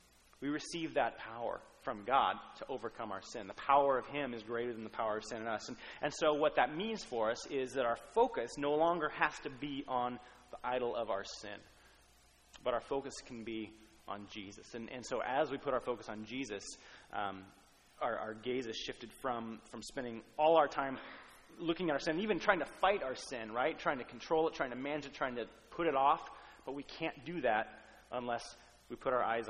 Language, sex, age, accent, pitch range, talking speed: English, male, 30-49, American, 110-140 Hz, 220 wpm